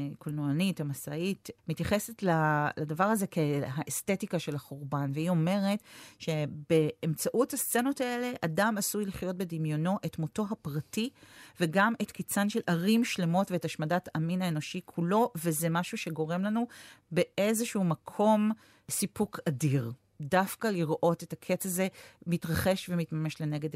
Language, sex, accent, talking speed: Hebrew, female, native, 120 wpm